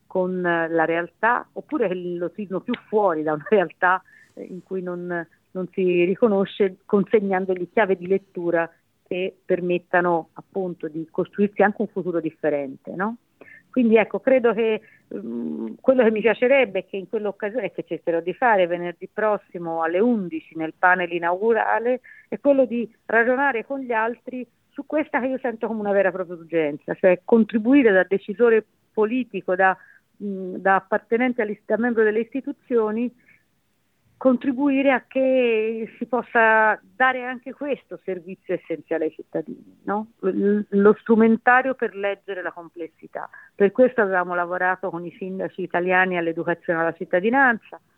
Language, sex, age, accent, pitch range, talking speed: Italian, female, 50-69, native, 175-230 Hz, 145 wpm